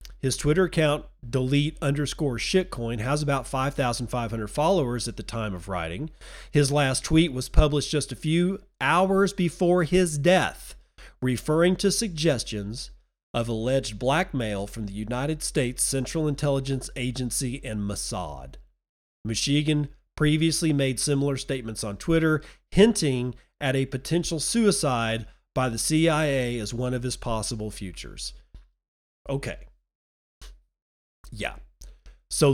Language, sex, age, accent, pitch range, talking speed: English, male, 40-59, American, 115-155 Hz, 125 wpm